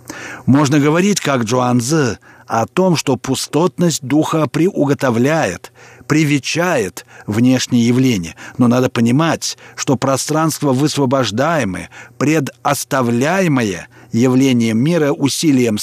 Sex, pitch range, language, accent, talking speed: male, 120-160 Hz, Russian, native, 90 wpm